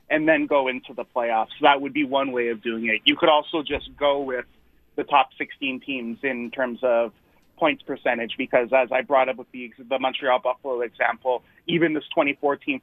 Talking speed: 205 wpm